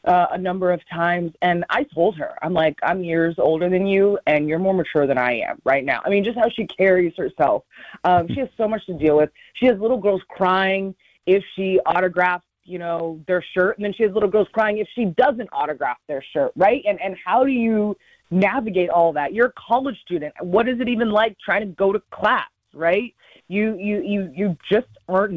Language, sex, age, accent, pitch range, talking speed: English, female, 30-49, American, 150-200 Hz, 225 wpm